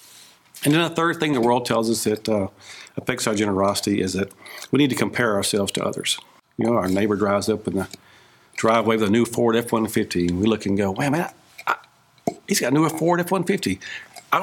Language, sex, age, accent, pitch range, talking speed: English, male, 50-69, American, 110-160 Hz, 210 wpm